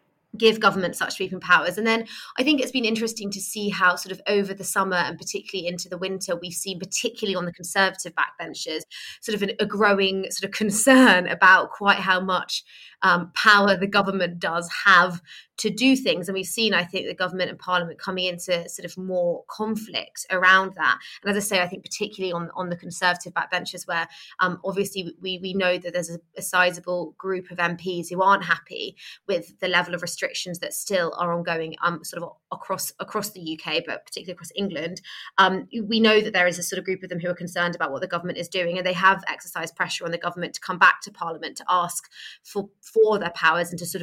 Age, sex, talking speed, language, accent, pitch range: 20-39, female, 220 wpm, English, British, 175-205 Hz